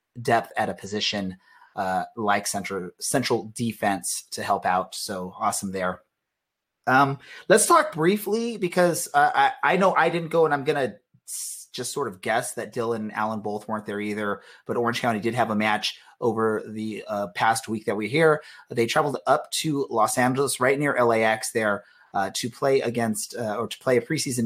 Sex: male